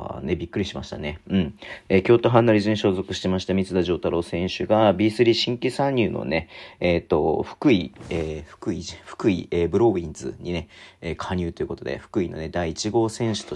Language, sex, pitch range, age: Japanese, male, 85-110 Hz, 40-59